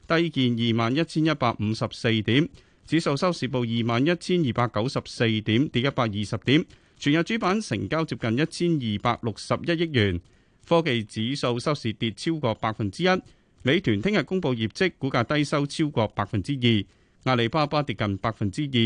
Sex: male